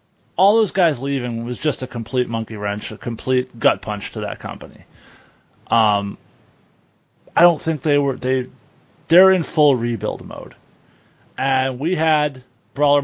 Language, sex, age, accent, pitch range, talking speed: English, male, 30-49, American, 120-160 Hz, 155 wpm